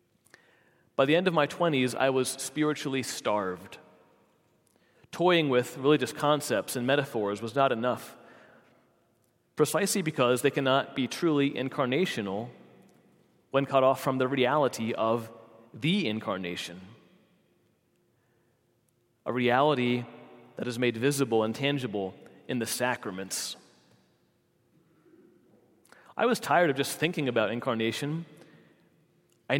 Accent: American